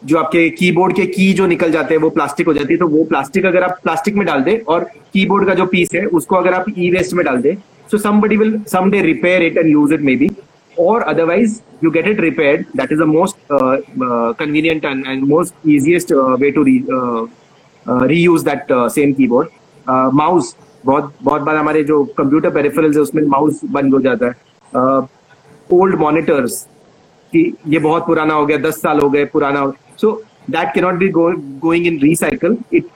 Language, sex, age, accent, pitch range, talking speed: Hindi, male, 30-49, native, 150-190 Hz, 195 wpm